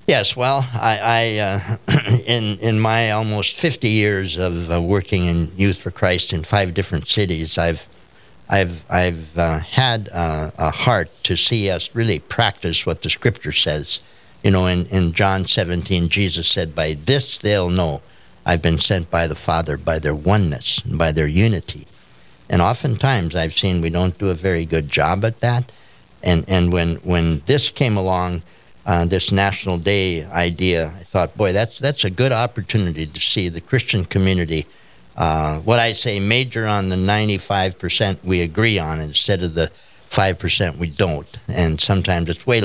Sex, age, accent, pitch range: male, 60-79, American, 85-105 Hz